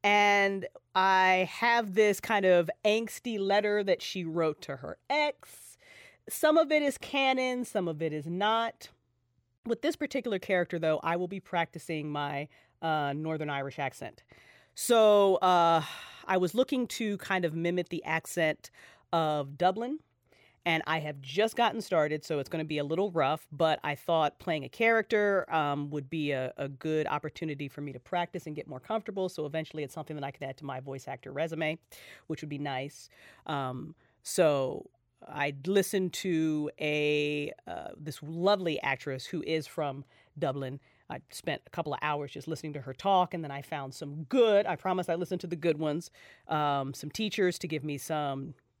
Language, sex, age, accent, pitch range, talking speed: English, female, 40-59, American, 150-195 Hz, 185 wpm